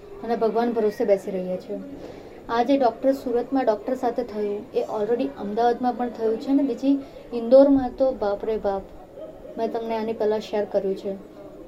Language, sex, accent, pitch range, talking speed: Gujarati, female, native, 225-280 Hz, 100 wpm